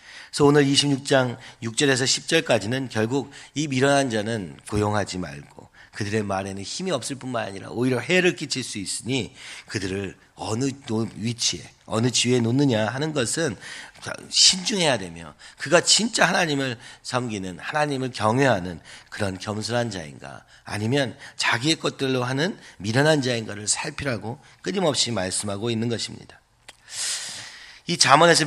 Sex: male